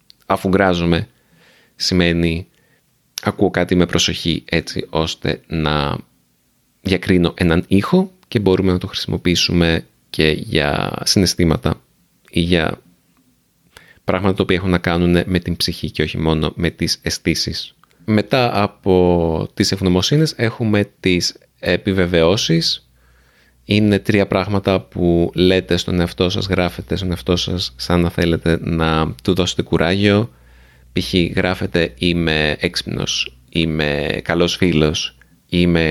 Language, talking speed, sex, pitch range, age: Greek, 120 wpm, male, 85-100 Hz, 30-49